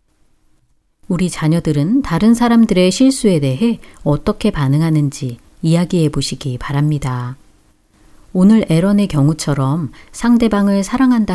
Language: Korean